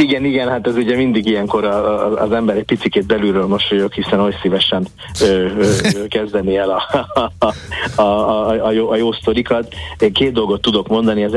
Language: Hungarian